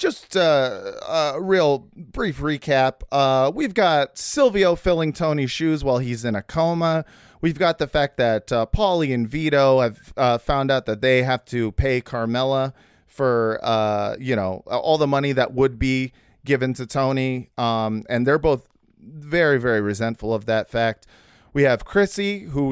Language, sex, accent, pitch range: English, male, American, 115-150 Hz